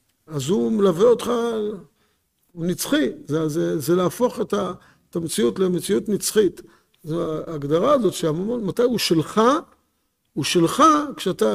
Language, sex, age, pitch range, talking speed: Hebrew, male, 50-69, 155-200 Hz, 130 wpm